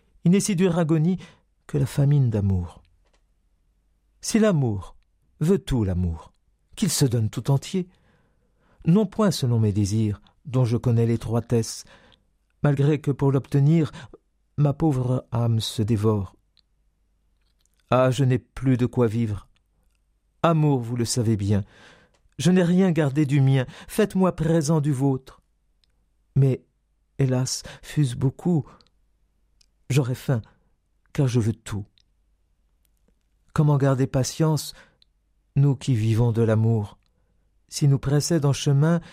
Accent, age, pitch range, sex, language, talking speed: French, 50-69, 105-150 Hz, male, French, 125 wpm